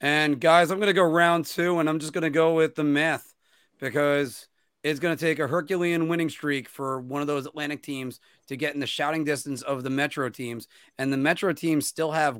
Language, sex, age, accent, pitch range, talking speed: English, male, 30-49, American, 140-180 Hz, 230 wpm